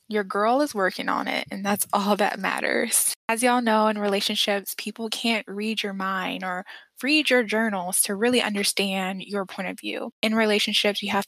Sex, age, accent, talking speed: female, 10-29, American, 190 wpm